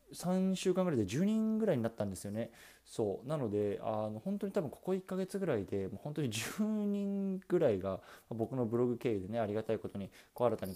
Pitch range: 100-165 Hz